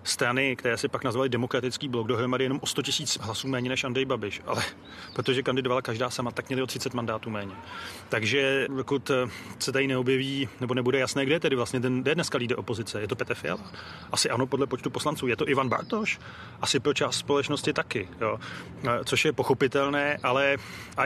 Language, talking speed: Czech, 195 wpm